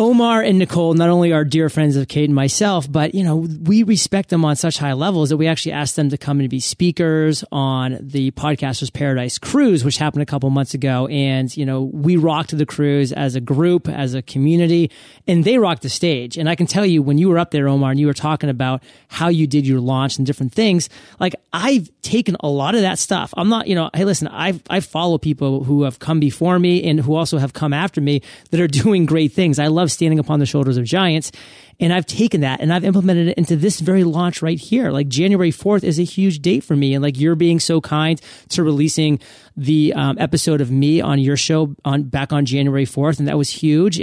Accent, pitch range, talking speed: American, 140-175 Hz, 240 wpm